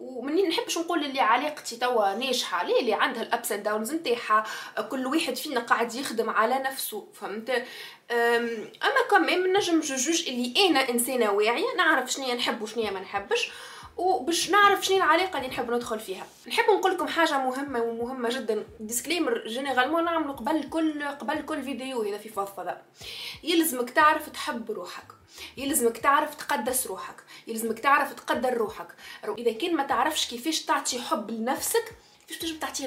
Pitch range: 235-325 Hz